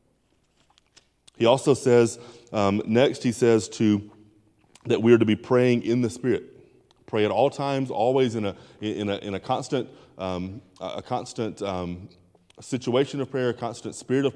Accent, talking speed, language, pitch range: American, 165 wpm, English, 115-145 Hz